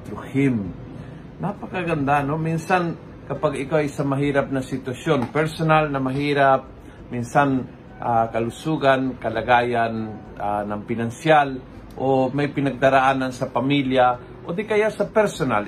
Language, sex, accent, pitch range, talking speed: Filipino, male, native, 130-155 Hz, 120 wpm